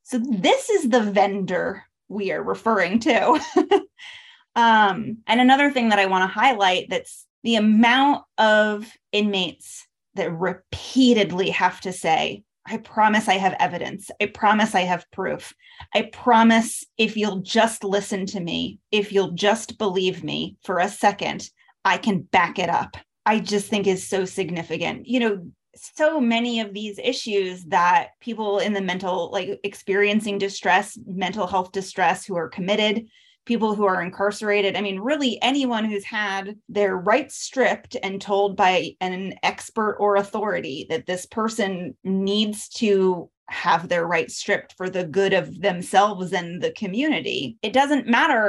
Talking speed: 155 wpm